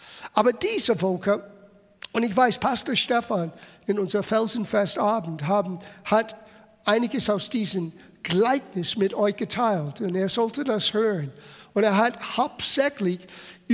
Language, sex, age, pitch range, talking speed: German, male, 60-79, 185-230 Hz, 125 wpm